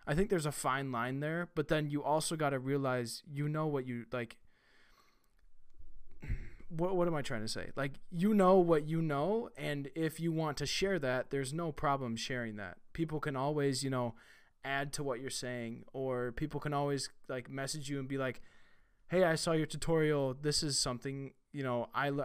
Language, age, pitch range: English, 20-39, 120-150 Hz